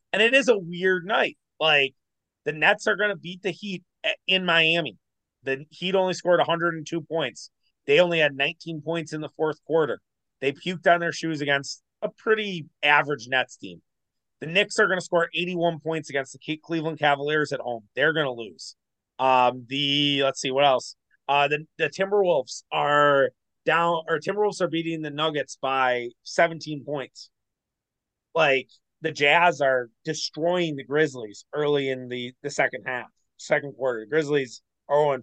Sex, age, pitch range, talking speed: male, 30-49, 135-170 Hz, 170 wpm